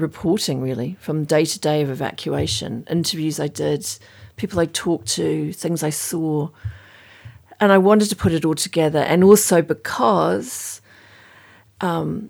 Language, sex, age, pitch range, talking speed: English, female, 40-59, 115-160 Hz, 145 wpm